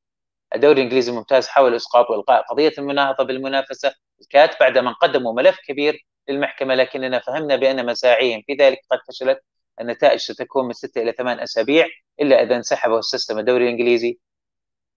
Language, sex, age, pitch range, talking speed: English, male, 30-49, 130-180 Hz, 145 wpm